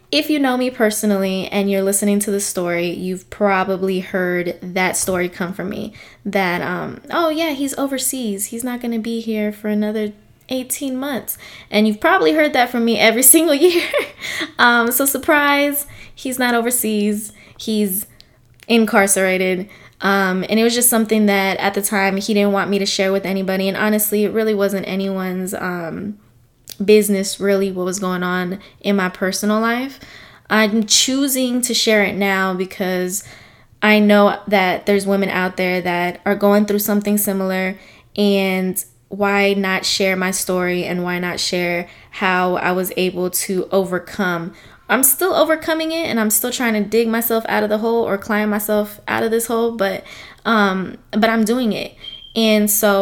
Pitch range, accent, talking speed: 185-225 Hz, American, 175 wpm